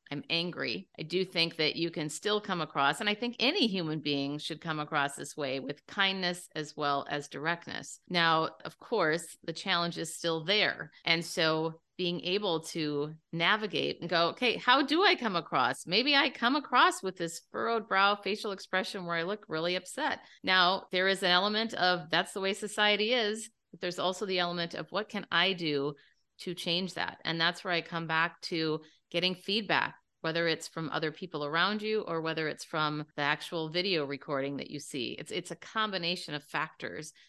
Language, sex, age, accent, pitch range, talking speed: English, female, 30-49, American, 155-190 Hz, 195 wpm